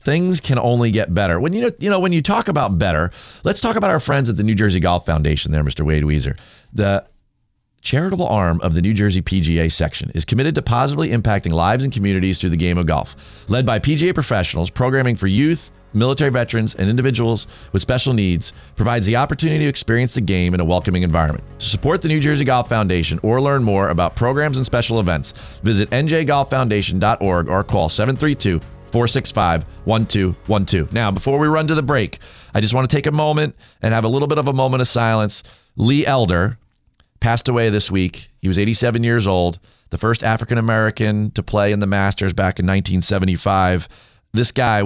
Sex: male